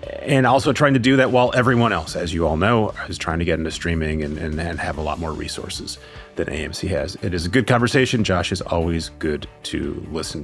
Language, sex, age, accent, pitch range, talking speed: English, male, 30-49, American, 85-120 Hz, 235 wpm